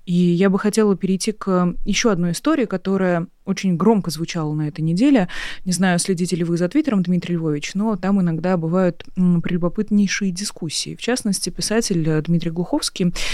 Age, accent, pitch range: 20-39, native, 175-225 Hz